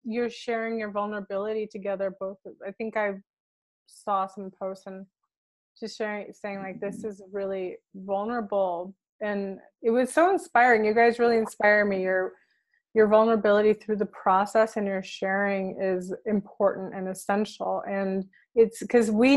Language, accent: English, American